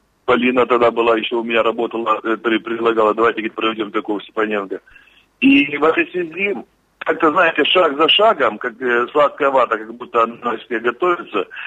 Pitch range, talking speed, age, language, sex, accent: 115-145 Hz, 145 wpm, 40-59, Russian, male, native